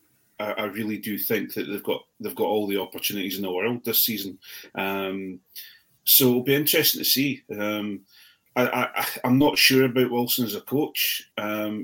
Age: 30-49